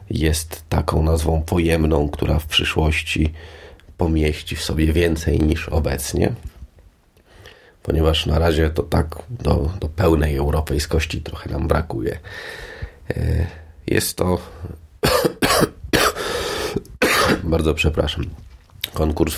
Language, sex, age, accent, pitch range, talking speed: Polish, male, 30-49, native, 75-85 Hz, 95 wpm